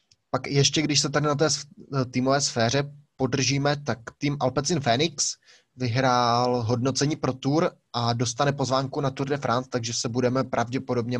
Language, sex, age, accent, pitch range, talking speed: Czech, male, 20-39, native, 125-145 Hz, 155 wpm